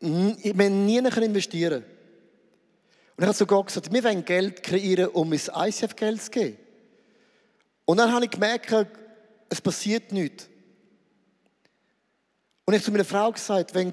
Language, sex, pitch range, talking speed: German, male, 195-240 Hz, 155 wpm